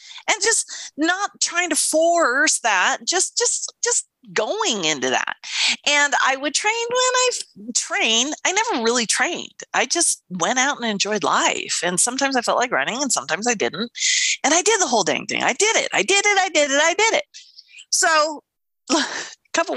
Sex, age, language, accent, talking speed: female, 30-49, English, American, 190 wpm